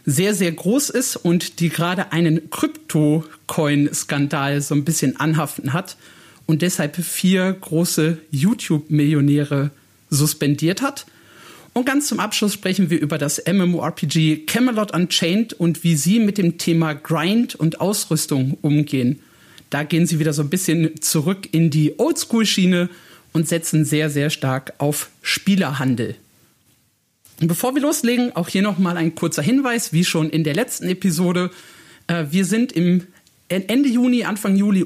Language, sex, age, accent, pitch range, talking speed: German, male, 40-59, German, 150-185 Hz, 140 wpm